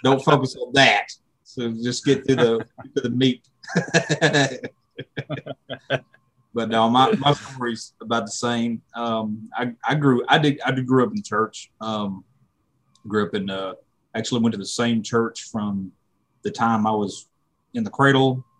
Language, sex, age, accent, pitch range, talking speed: English, male, 30-49, American, 105-130 Hz, 165 wpm